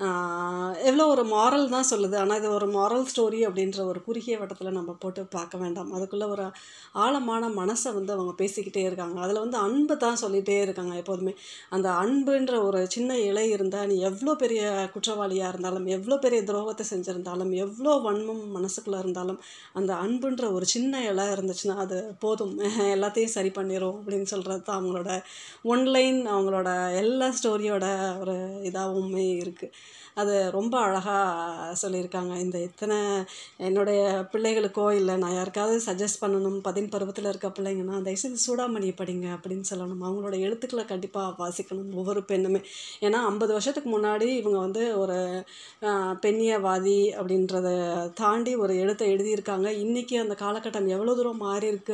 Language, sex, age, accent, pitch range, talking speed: Tamil, female, 30-49, native, 190-215 Hz, 145 wpm